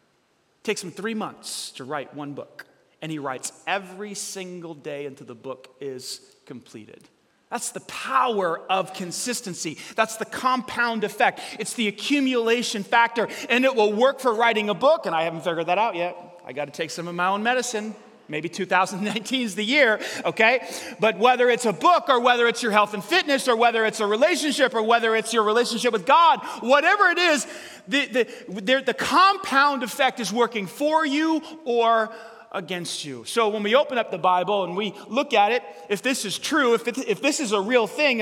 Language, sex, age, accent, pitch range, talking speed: English, male, 30-49, American, 200-270 Hz, 200 wpm